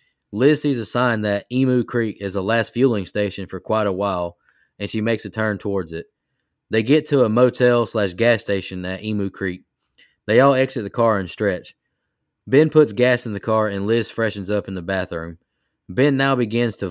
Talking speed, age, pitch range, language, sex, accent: 205 wpm, 20-39, 95-120 Hz, English, male, American